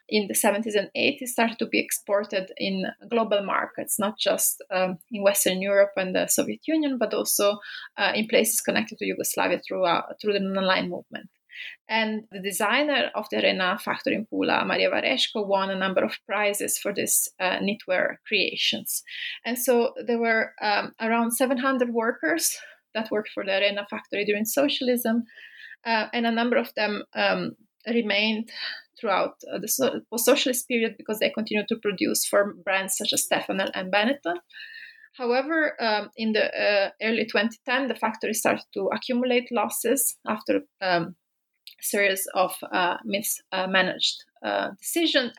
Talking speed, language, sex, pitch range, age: 160 wpm, English, female, 205-255 Hz, 30-49